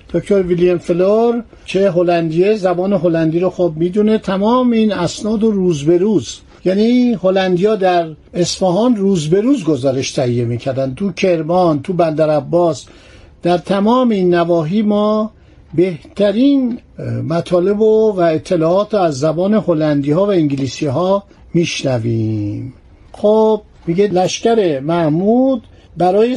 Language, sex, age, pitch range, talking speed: Persian, male, 50-69, 165-210 Hz, 125 wpm